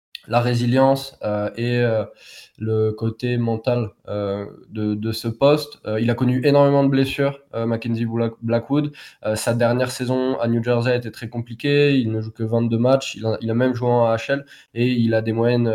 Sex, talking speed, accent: male, 200 wpm, French